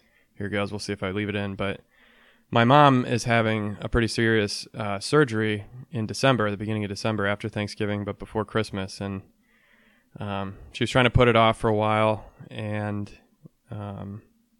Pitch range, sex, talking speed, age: 105-120 Hz, male, 175 wpm, 20-39